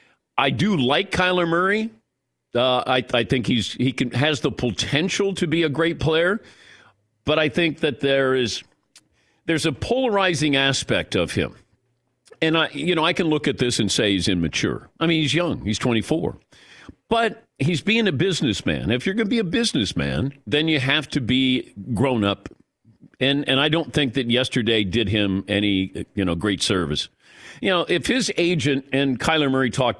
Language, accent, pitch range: English, American, 115-160 Hz